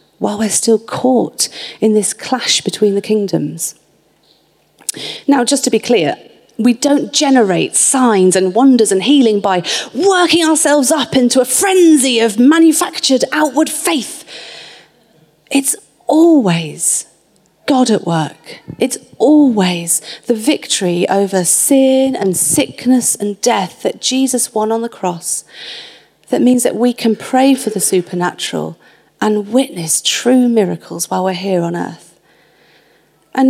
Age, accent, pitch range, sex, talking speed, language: 30-49, British, 190-265 Hz, female, 135 wpm, English